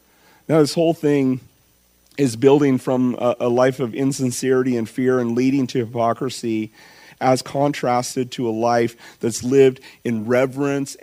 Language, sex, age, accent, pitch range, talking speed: English, male, 40-59, American, 110-130 Hz, 145 wpm